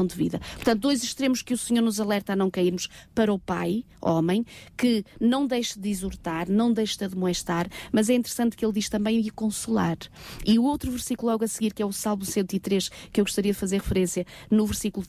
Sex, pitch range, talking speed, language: female, 190-235 Hz, 220 wpm, Portuguese